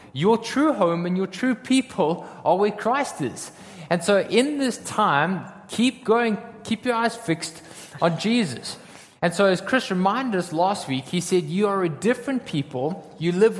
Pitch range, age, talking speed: 155-210 Hz, 20-39, 180 wpm